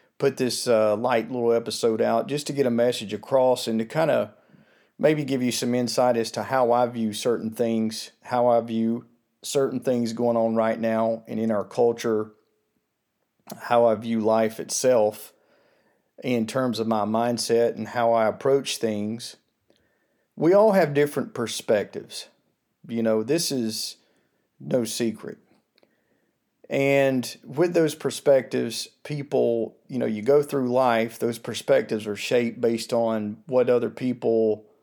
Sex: male